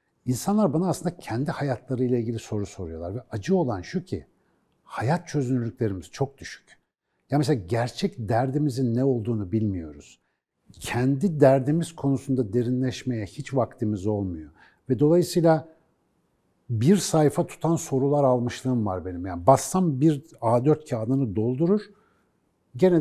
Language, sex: Turkish, male